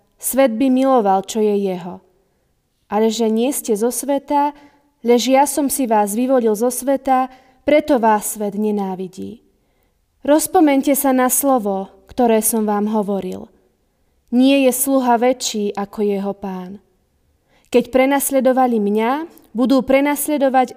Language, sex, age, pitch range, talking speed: Slovak, female, 20-39, 215-275 Hz, 125 wpm